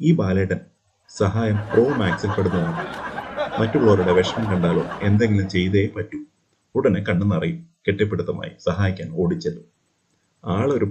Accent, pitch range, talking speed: native, 90-110 Hz, 105 wpm